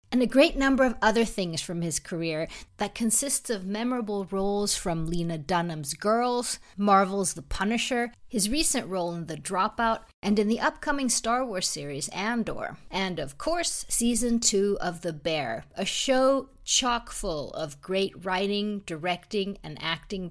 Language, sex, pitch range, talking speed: English, female, 175-230 Hz, 160 wpm